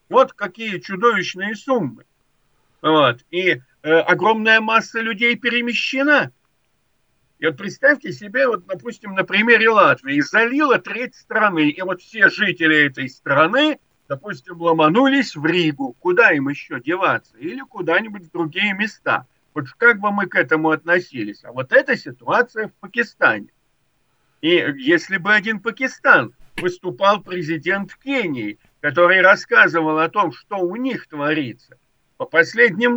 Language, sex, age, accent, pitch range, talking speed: Russian, male, 50-69, native, 165-230 Hz, 135 wpm